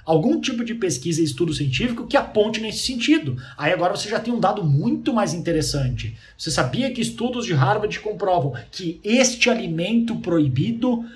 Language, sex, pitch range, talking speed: Portuguese, male, 145-220 Hz, 170 wpm